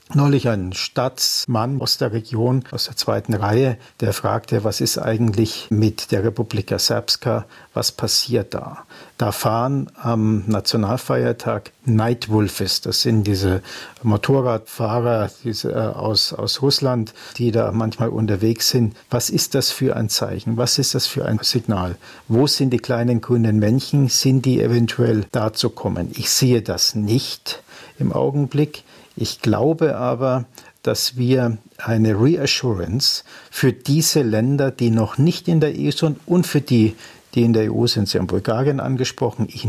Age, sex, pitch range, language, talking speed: 50-69, male, 110-130 Hz, German, 150 wpm